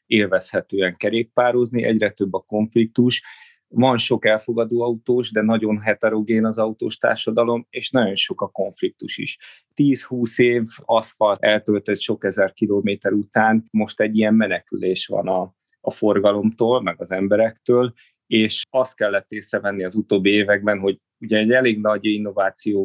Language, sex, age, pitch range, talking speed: Hungarian, male, 30-49, 105-115 Hz, 140 wpm